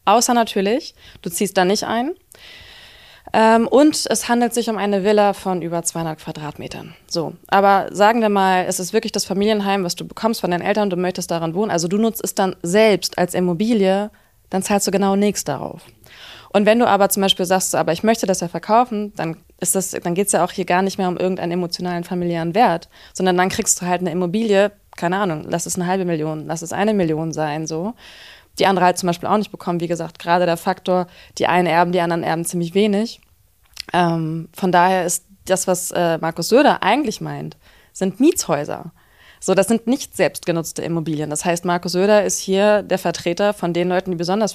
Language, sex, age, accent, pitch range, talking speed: German, female, 20-39, German, 175-210 Hz, 210 wpm